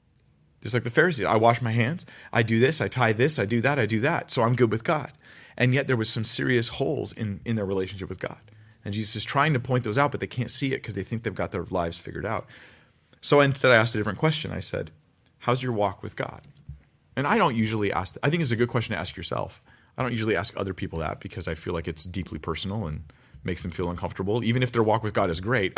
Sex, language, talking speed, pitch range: male, English, 270 wpm, 90-125 Hz